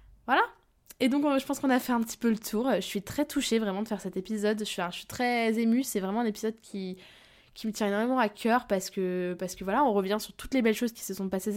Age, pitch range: 20-39, 185-225 Hz